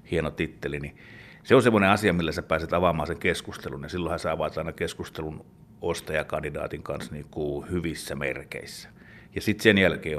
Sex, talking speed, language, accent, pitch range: male, 170 wpm, Finnish, native, 80-90 Hz